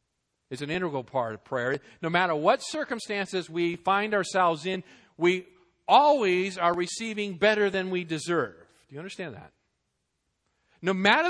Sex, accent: male, American